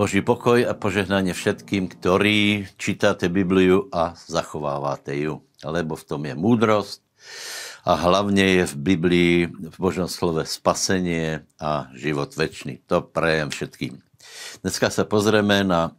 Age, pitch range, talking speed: 70-89, 90-105 Hz, 130 wpm